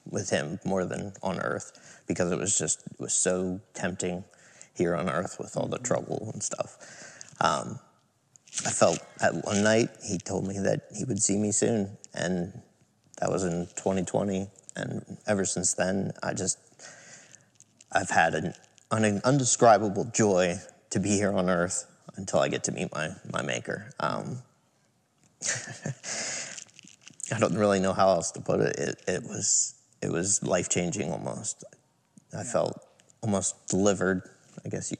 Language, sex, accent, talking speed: English, male, American, 160 wpm